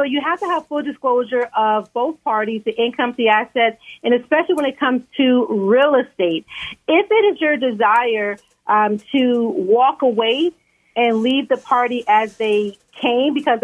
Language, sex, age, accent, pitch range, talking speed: English, female, 40-59, American, 240-305 Hz, 170 wpm